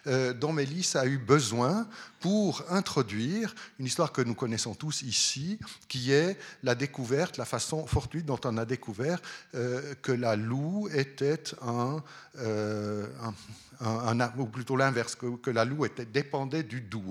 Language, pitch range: French, 115-155 Hz